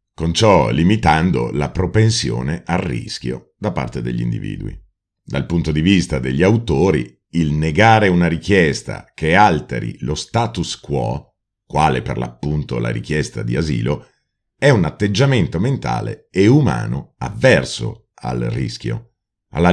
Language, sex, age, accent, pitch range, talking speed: Italian, male, 40-59, native, 70-105 Hz, 130 wpm